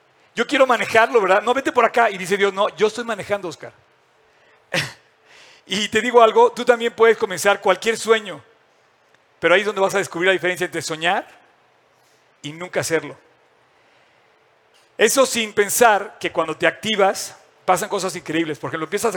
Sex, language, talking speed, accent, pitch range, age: male, Spanish, 165 wpm, Mexican, 180-225 Hz, 50-69